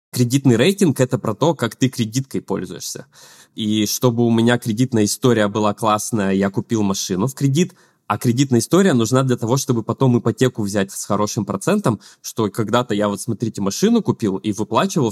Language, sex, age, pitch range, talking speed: Russian, male, 20-39, 105-125 Hz, 175 wpm